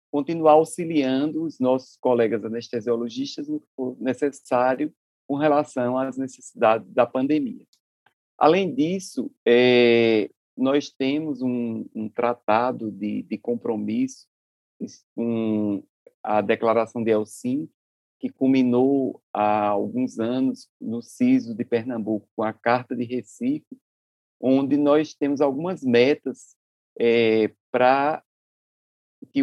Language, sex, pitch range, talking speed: Portuguese, male, 115-150 Hz, 105 wpm